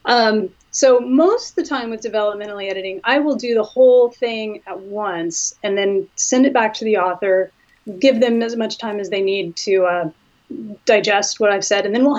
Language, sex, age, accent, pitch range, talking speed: English, female, 30-49, American, 195-240 Hz, 205 wpm